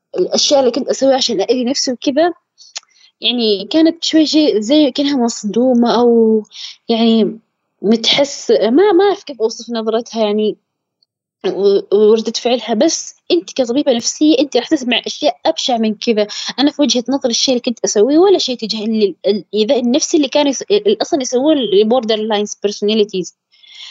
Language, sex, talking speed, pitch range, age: Arabic, female, 145 wpm, 230-325 Hz, 20-39